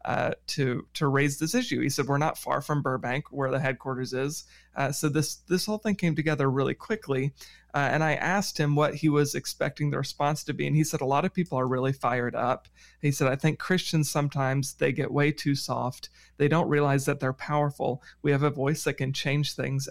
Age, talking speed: 30-49, 230 wpm